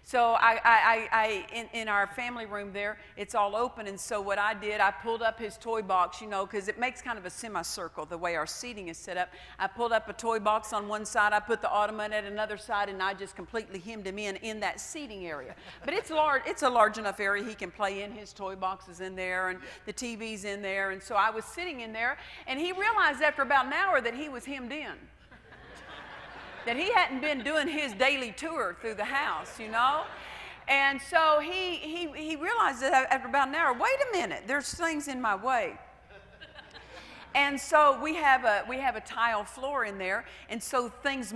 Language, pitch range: English, 205-275 Hz